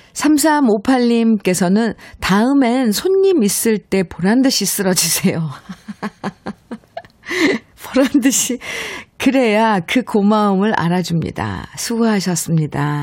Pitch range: 170-230 Hz